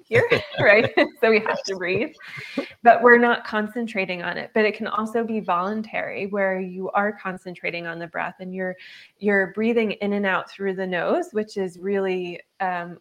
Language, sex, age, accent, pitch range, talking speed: English, female, 20-39, American, 180-205 Hz, 185 wpm